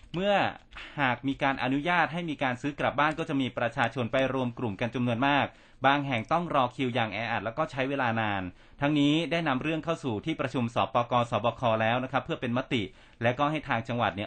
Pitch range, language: 120-150 Hz, Thai